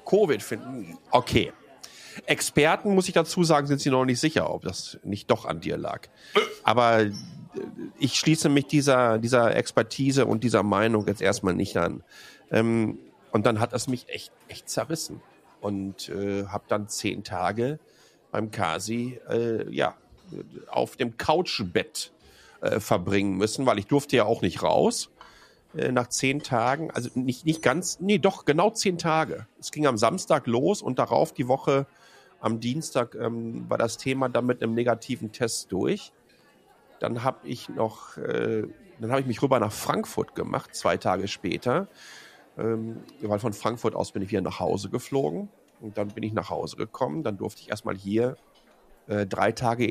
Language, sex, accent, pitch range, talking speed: German, male, German, 105-135 Hz, 170 wpm